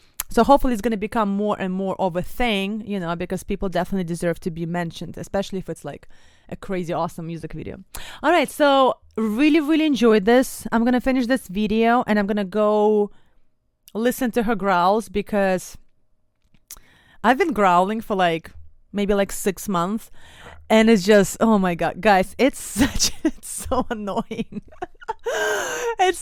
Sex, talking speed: female, 170 wpm